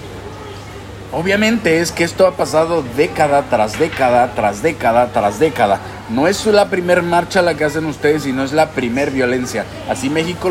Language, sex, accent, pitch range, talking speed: Spanish, male, Mexican, 120-160 Hz, 170 wpm